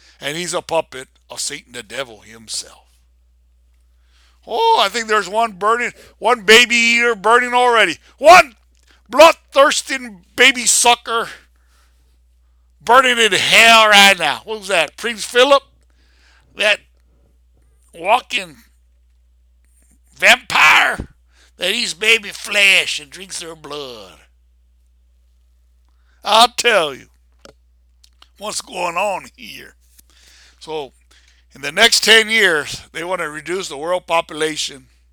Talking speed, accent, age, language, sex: 110 wpm, American, 60-79, English, male